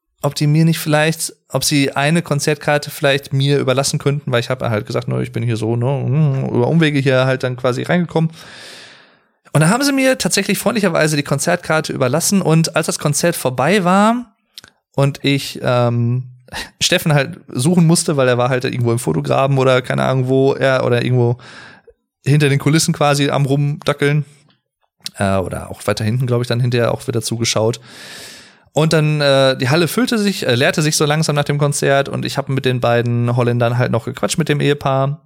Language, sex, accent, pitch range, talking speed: German, male, German, 125-160 Hz, 195 wpm